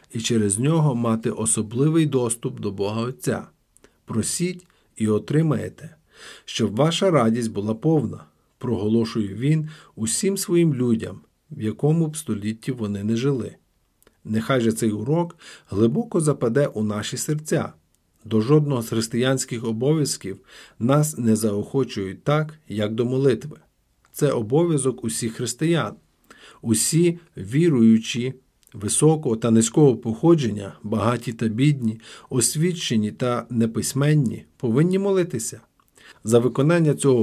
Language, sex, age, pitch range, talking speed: Ukrainian, male, 50-69, 110-150 Hz, 115 wpm